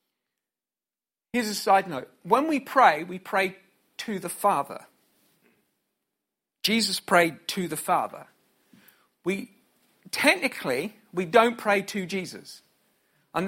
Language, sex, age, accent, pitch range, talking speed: English, male, 50-69, British, 190-255 Hz, 115 wpm